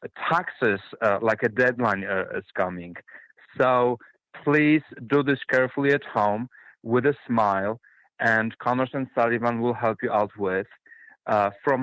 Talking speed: 145 wpm